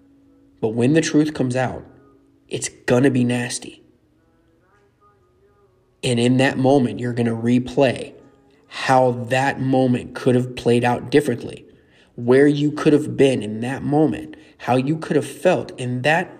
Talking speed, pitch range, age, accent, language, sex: 155 wpm, 115-135 Hz, 30-49, American, English, male